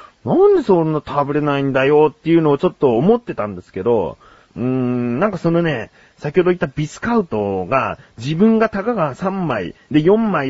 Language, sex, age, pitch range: Japanese, male, 30-49, 115-190 Hz